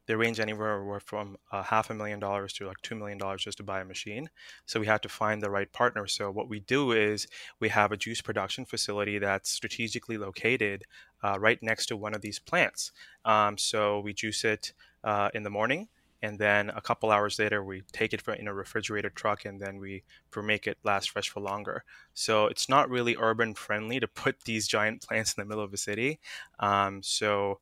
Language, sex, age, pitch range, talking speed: English, male, 20-39, 100-110 Hz, 215 wpm